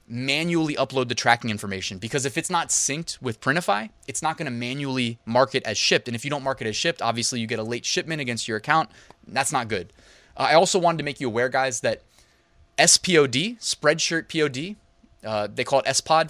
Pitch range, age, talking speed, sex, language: 110-140 Hz, 20-39, 215 wpm, male, English